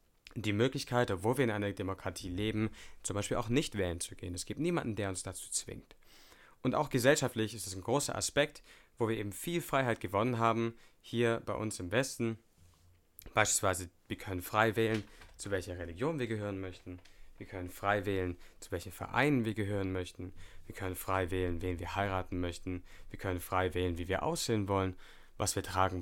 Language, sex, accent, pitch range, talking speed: English, male, German, 95-120 Hz, 190 wpm